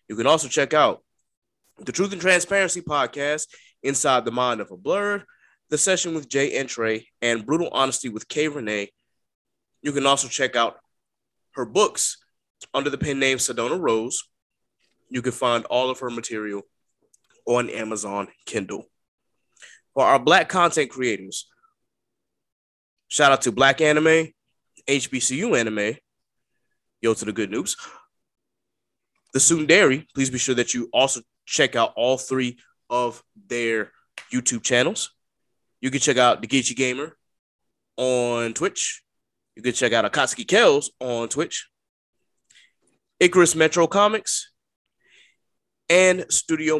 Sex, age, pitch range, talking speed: male, 20-39, 120-160 Hz, 135 wpm